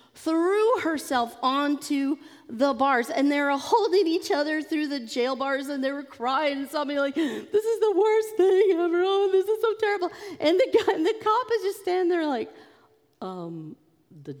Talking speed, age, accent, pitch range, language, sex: 195 wpm, 40-59, American, 230-365 Hz, English, female